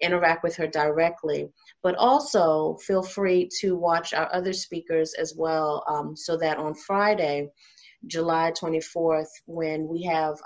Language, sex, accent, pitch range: English, female, American, 155-175 Hz